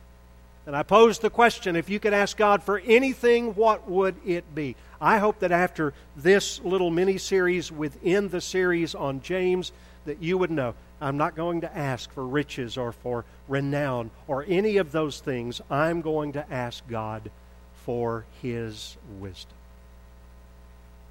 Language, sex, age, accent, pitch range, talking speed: English, male, 50-69, American, 110-175 Hz, 155 wpm